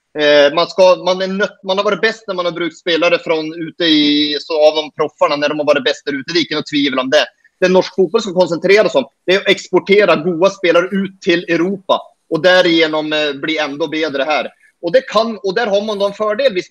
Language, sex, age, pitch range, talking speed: English, male, 30-49, 170-210 Hz, 235 wpm